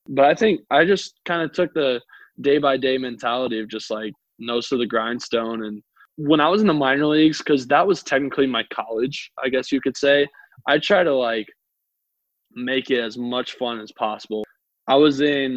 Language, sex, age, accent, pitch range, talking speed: English, male, 20-39, American, 120-140 Hz, 195 wpm